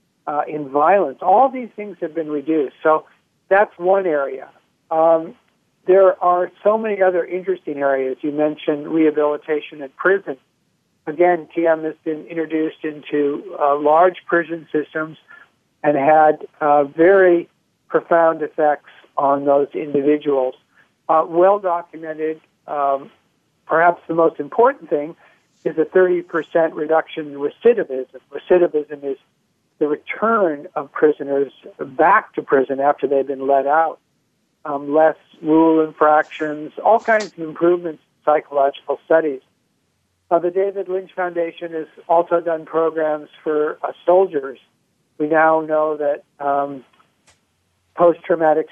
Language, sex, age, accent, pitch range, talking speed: English, male, 60-79, American, 145-170 Hz, 125 wpm